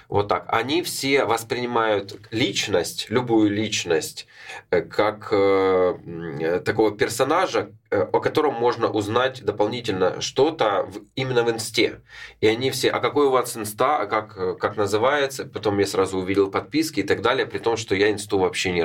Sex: male